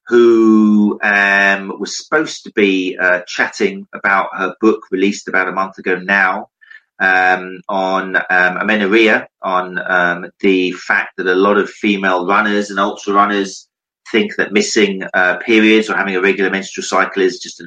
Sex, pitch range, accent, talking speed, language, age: male, 95-115 Hz, British, 165 wpm, English, 30-49